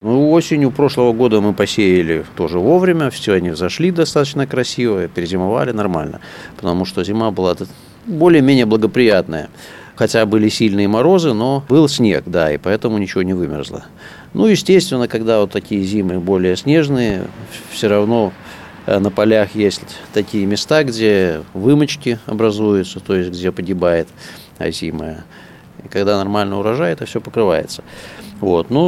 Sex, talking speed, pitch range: male, 135 wpm, 95-125 Hz